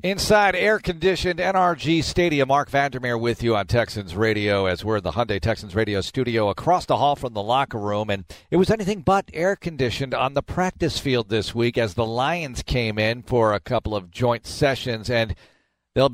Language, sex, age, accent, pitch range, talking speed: English, male, 40-59, American, 110-145 Hz, 190 wpm